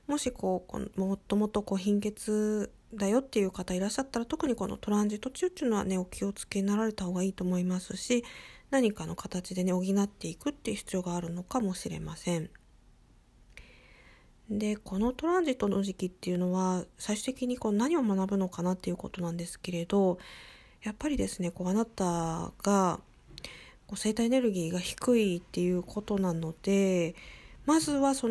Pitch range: 185-235 Hz